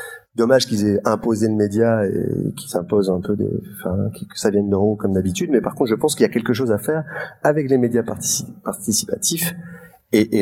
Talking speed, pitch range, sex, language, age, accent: 225 wpm, 100-145 Hz, male, French, 30-49, French